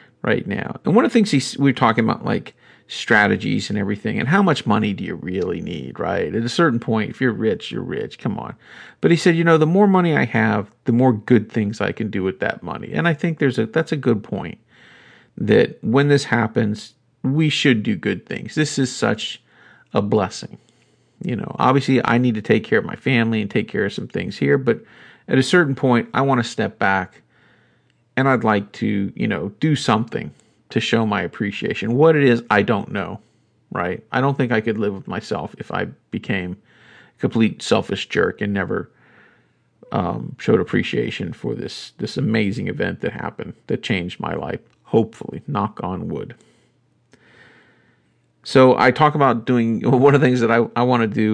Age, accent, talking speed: 40-59, American, 205 wpm